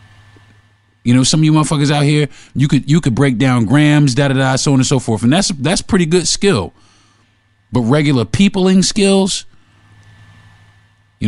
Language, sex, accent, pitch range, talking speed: English, male, American, 105-145 Hz, 170 wpm